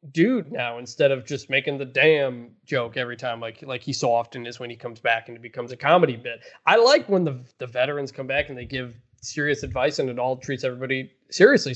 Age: 20-39